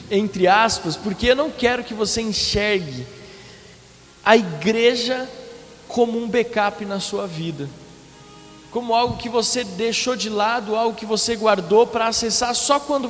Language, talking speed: Portuguese, 145 wpm